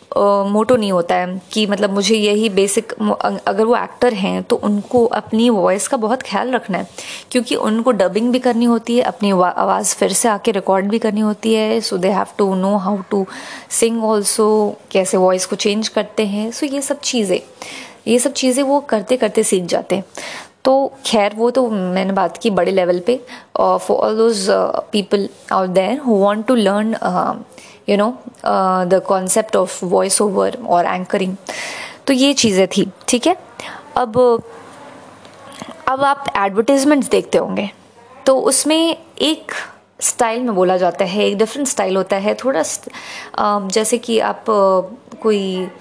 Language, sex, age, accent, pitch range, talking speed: English, female, 20-39, Indian, 195-250 Hz, 175 wpm